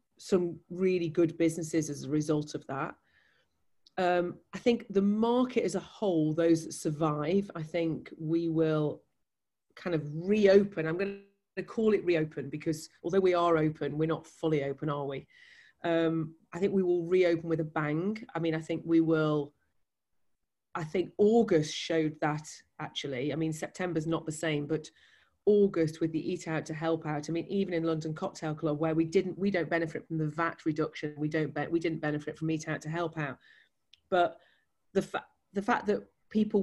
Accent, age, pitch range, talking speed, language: British, 40-59, 155-185 Hz, 190 wpm, English